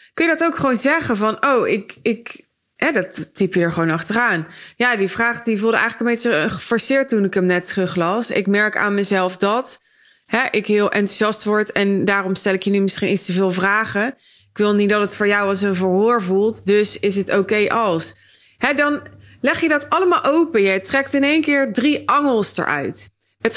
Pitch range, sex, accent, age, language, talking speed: 195-245 Hz, female, Dutch, 20-39, Dutch, 215 wpm